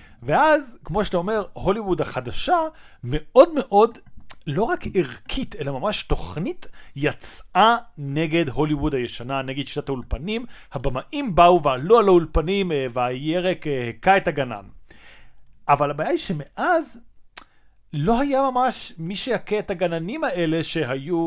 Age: 40-59